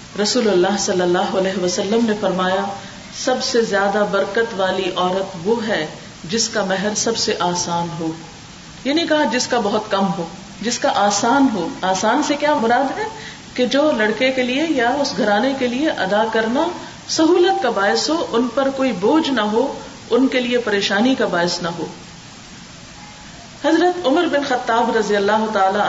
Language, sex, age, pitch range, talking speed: Urdu, female, 40-59, 195-255 Hz, 175 wpm